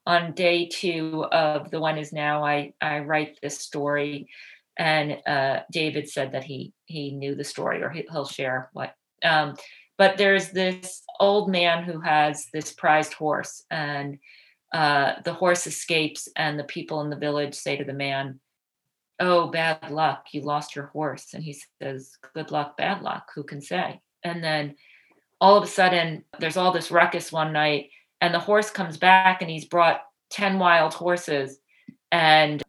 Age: 40-59